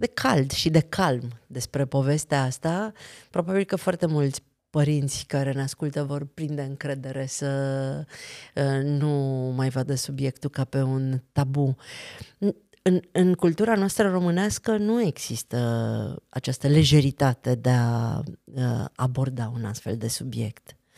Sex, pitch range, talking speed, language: female, 135-185 Hz, 125 wpm, Romanian